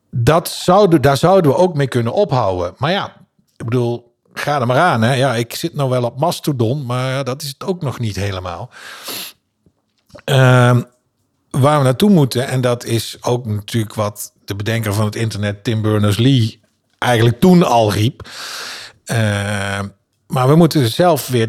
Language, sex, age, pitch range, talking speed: Dutch, male, 50-69, 110-135 Hz, 170 wpm